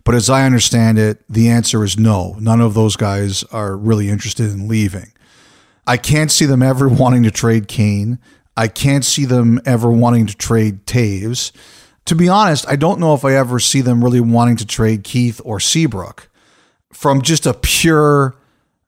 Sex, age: male, 50-69